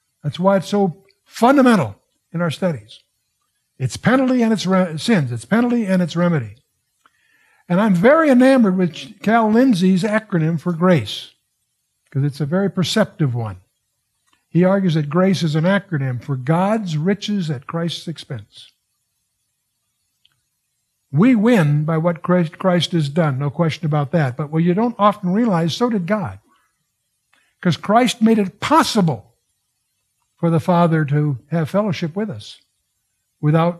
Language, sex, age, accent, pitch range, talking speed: English, male, 60-79, American, 135-190 Hz, 145 wpm